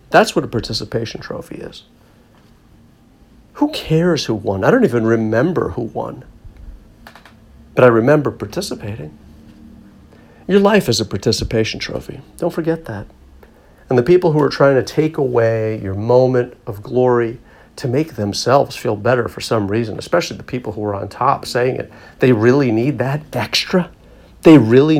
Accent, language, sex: American, English, male